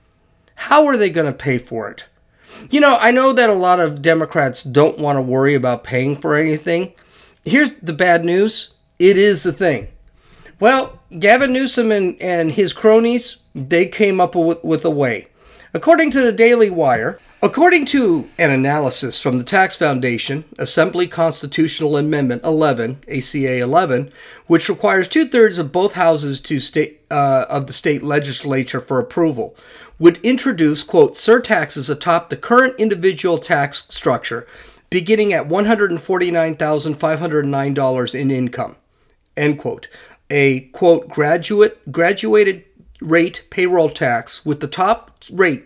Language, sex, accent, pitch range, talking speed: English, male, American, 135-195 Hz, 140 wpm